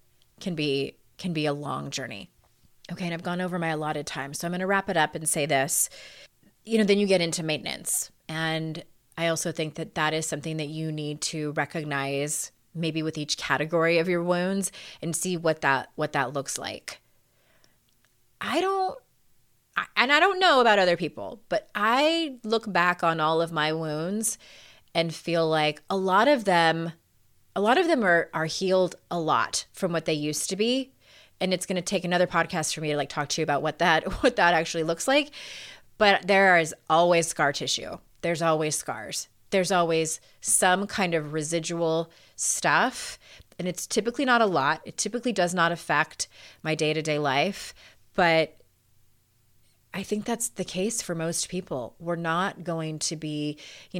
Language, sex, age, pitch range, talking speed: English, female, 30-49, 155-185 Hz, 185 wpm